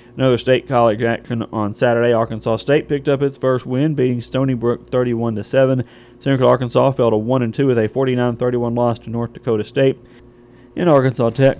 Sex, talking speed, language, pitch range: male, 170 wpm, English, 115-130 Hz